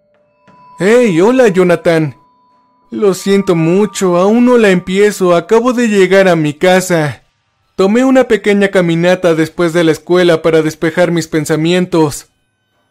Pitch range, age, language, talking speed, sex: 165-200 Hz, 20-39, Spanish, 130 wpm, male